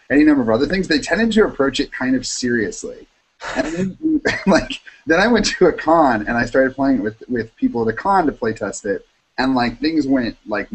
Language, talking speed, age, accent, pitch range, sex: English, 235 wpm, 30-49, American, 110-155 Hz, male